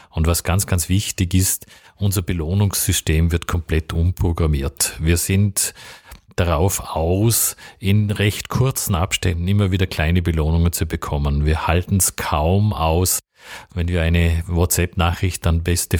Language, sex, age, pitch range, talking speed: German, male, 40-59, 85-95 Hz, 135 wpm